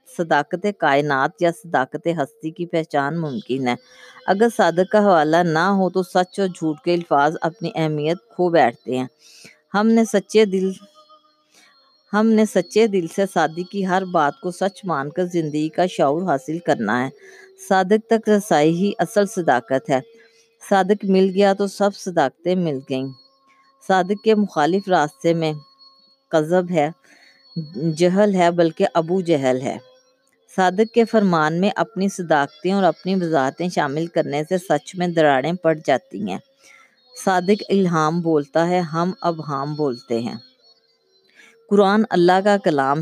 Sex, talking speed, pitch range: female, 150 wpm, 160-205 Hz